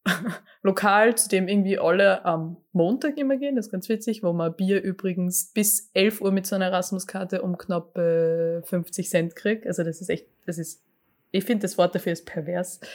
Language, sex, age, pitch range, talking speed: German, female, 20-39, 175-215 Hz, 205 wpm